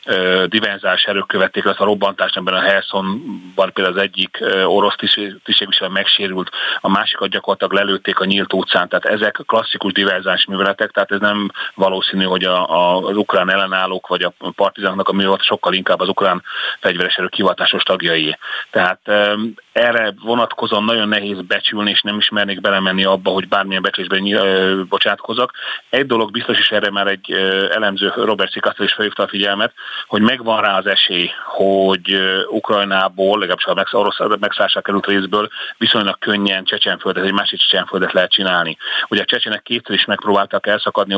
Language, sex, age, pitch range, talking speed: Hungarian, male, 30-49, 95-105 Hz, 165 wpm